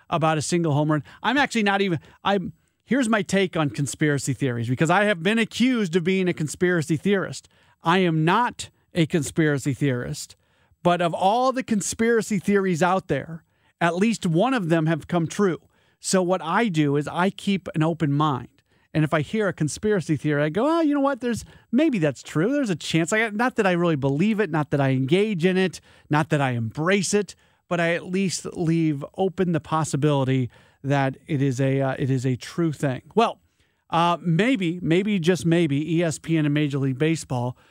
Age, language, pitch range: 40-59, English, 145-195 Hz